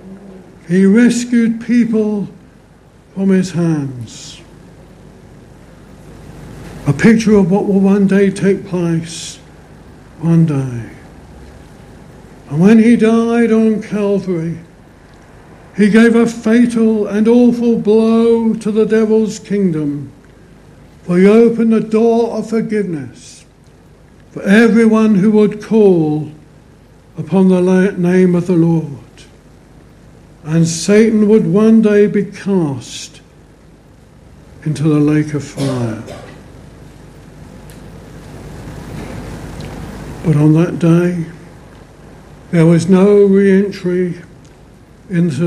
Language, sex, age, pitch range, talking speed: English, male, 60-79, 165-220 Hz, 95 wpm